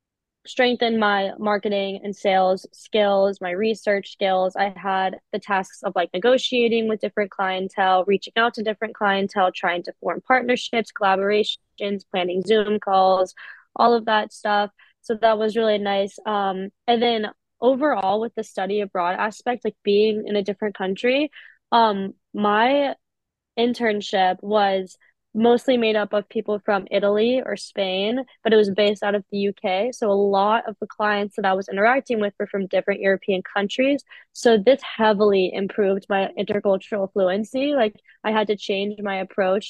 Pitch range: 195-225 Hz